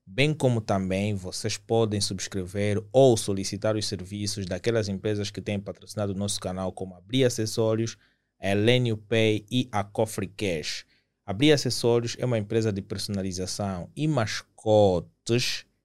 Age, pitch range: 20-39, 100-115 Hz